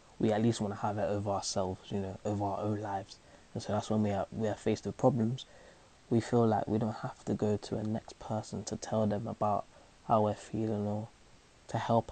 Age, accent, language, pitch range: 20-39, British, English, 105-115 Hz